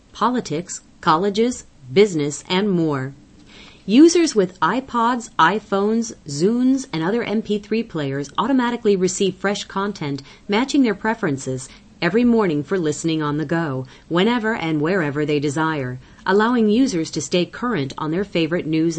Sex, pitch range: female, 155-220 Hz